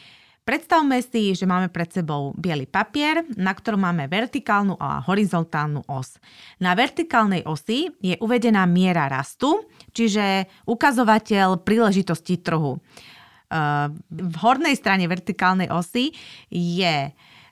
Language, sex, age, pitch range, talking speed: Slovak, female, 30-49, 170-230 Hz, 110 wpm